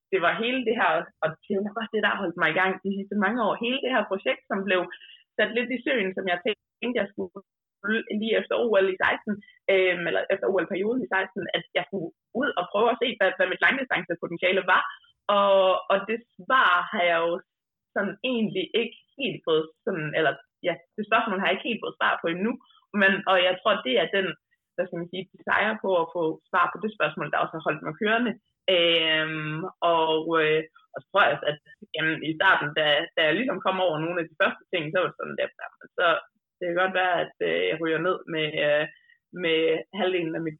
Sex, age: female, 20-39